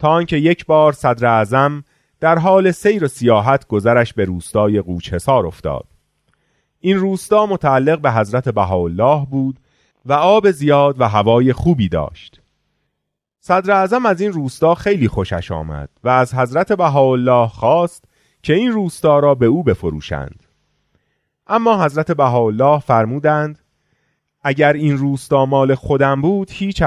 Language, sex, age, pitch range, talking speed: Persian, male, 30-49, 105-160 Hz, 135 wpm